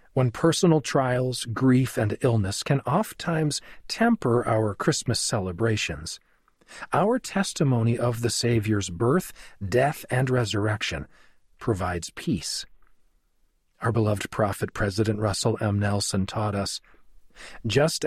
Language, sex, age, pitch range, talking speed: English, male, 40-59, 105-140 Hz, 110 wpm